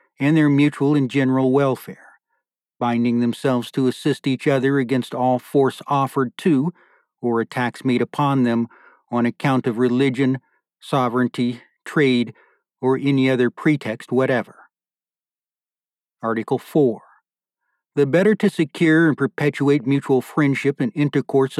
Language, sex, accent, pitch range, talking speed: English, male, American, 130-145 Hz, 125 wpm